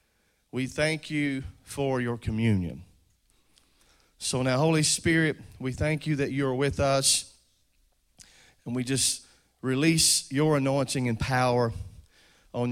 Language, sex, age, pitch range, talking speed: English, male, 40-59, 115-145 Hz, 125 wpm